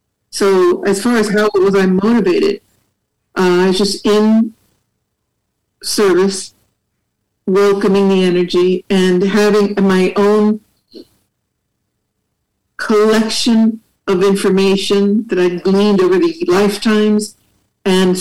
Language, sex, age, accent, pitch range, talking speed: English, female, 60-79, American, 180-215 Hz, 100 wpm